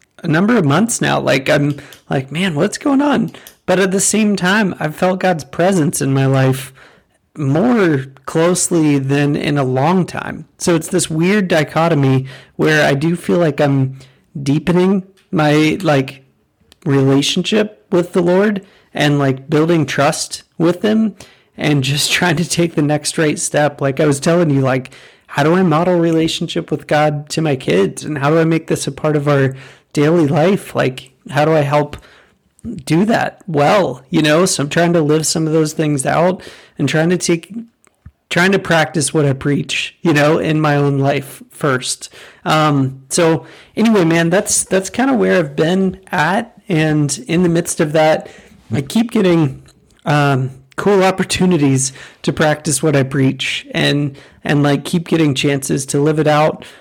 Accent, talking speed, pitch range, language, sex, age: American, 175 wpm, 145-180 Hz, English, male, 30-49